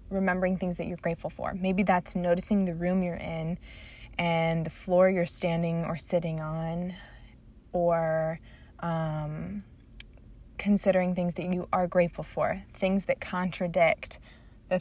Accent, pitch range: American, 165-190 Hz